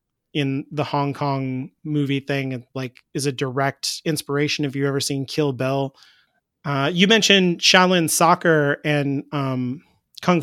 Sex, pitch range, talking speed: male, 140-170 Hz, 145 wpm